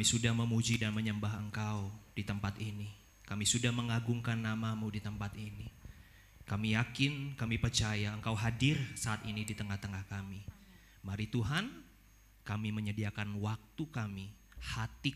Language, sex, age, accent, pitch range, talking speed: Indonesian, male, 30-49, native, 100-120 Hz, 135 wpm